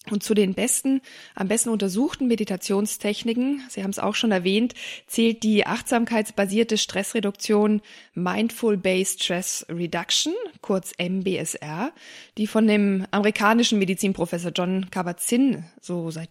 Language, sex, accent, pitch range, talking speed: German, female, German, 185-235 Hz, 120 wpm